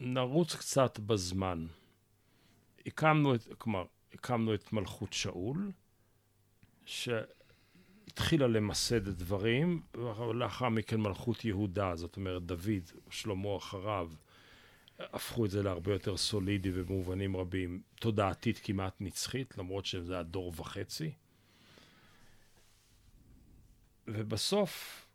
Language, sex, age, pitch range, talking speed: Hebrew, male, 50-69, 95-115 Hz, 95 wpm